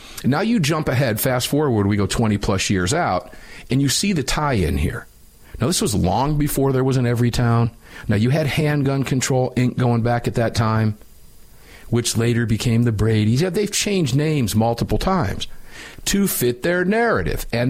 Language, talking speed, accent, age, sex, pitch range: English, 180 wpm, American, 50-69, male, 105-145 Hz